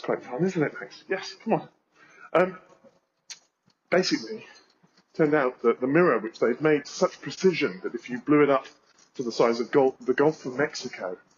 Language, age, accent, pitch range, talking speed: English, 30-49, British, 125-165 Hz, 200 wpm